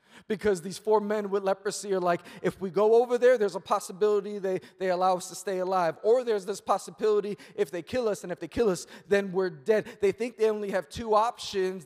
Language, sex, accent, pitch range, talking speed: English, male, American, 215-275 Hz, 235 wpm